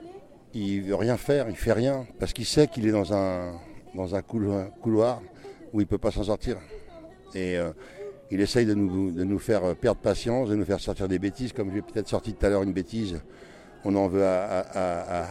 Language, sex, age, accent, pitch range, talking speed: French, male, 60-79, French, 105-135 Hz, 225 wpm